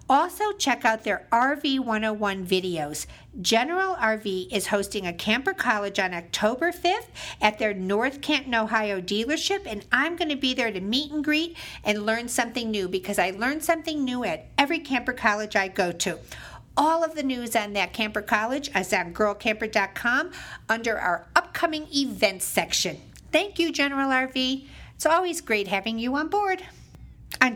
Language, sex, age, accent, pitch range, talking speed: English, female, 50-69, American, 200-275 Hz, 170 wpm